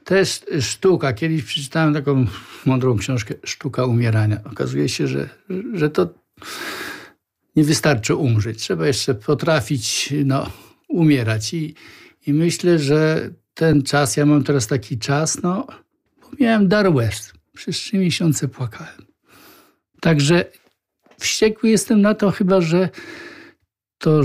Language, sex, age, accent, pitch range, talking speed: Polish, male, 60-79, native, 135-180 Hz, 115 wpm